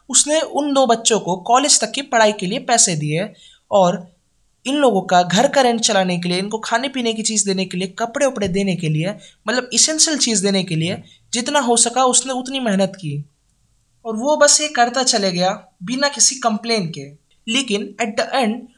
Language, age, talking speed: Hindi, 20-39, 200 wpm